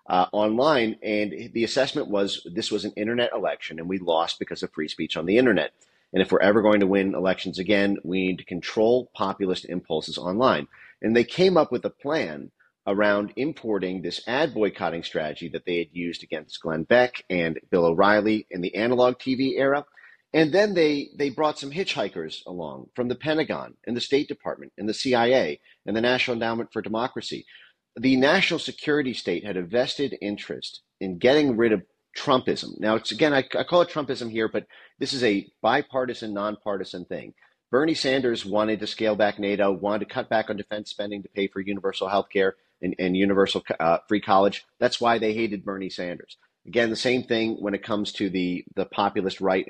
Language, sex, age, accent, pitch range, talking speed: English, male, 30-49, American, 95-125 Hz, 195 wpm